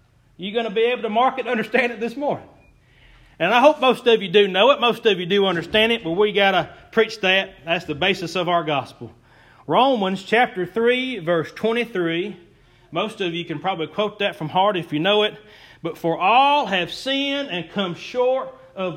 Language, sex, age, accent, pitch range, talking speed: English, male, 40-59, American, 195-265 Hz, 205 wpm